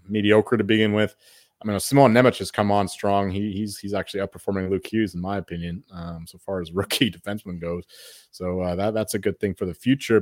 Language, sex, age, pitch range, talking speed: English, male, 30-49, 90-125 Hz, 230 wpm